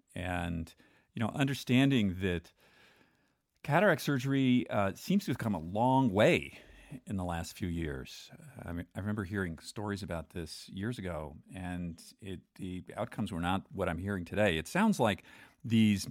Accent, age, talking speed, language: American, 50-69, 160 wpm, English